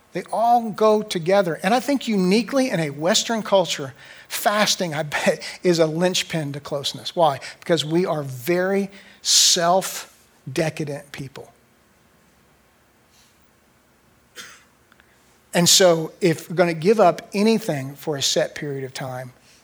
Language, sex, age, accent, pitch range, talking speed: English, male, 50-69, American, 145-185 Hz, 125 wpm